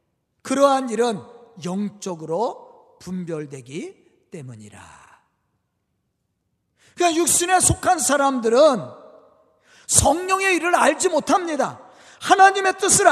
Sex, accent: male, native